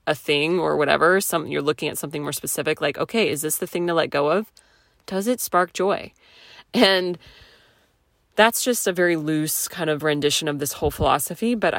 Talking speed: 200 wpm